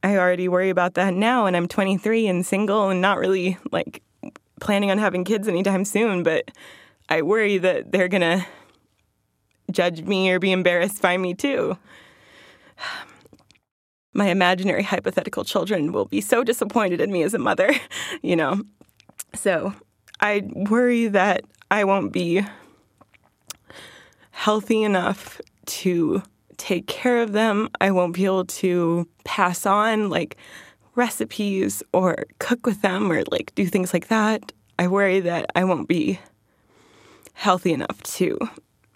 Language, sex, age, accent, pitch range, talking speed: English, female, 20-39, American, 175-205 Hz, 145 wpm